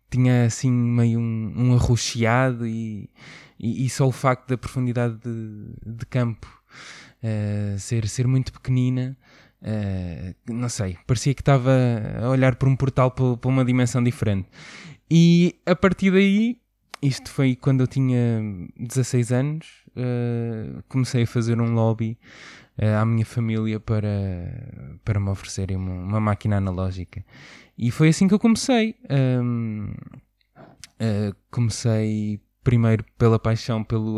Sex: male